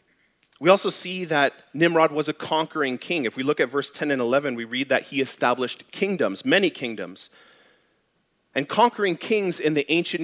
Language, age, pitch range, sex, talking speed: English, 30-49, 120-160 Hz, male, 180 wpm